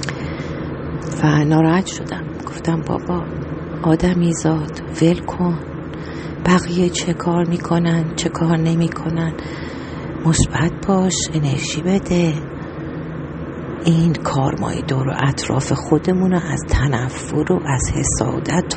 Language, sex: English, female